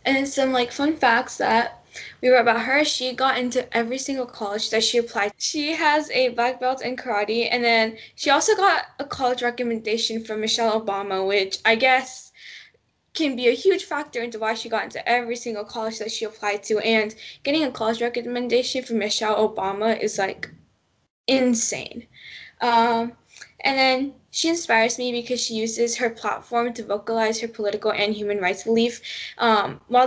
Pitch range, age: 220-250 Hz, 10-29